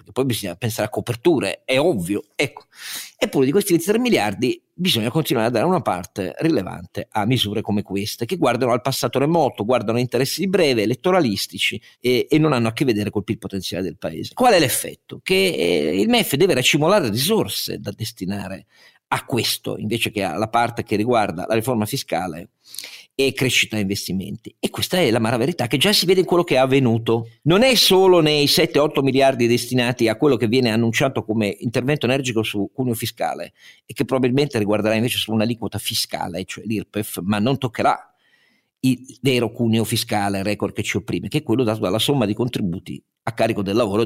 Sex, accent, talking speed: male, native, 190 wpm